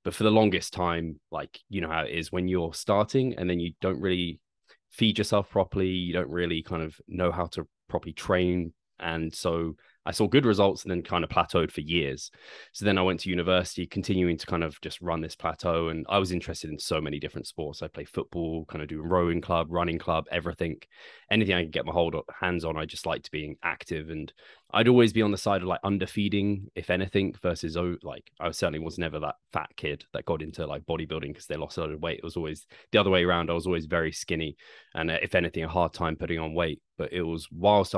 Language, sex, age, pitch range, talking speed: English, male, 20-39, 85-95 Hz, 240 wpm